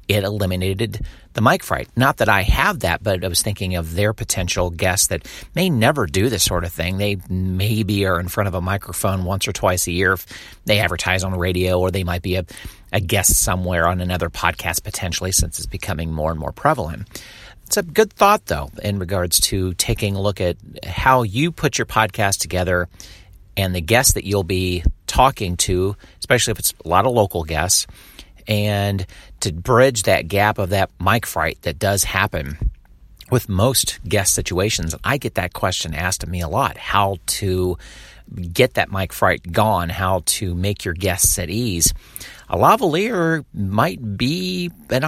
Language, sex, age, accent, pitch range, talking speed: English, male, 40-59, American, 90-105 Hz, 190 wpm